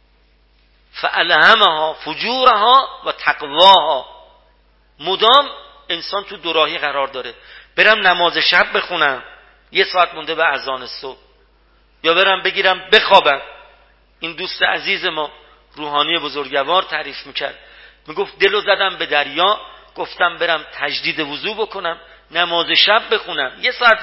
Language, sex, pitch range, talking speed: Persian, male, 155-220 Hz, 115 wpm